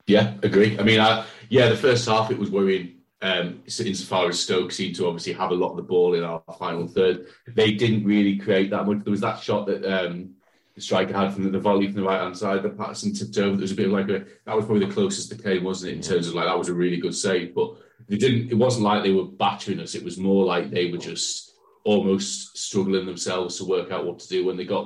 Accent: British